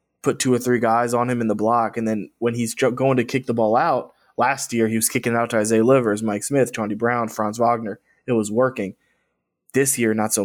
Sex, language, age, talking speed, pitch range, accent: male, English, 20-39, 245 wpm, 110-120 Hz, American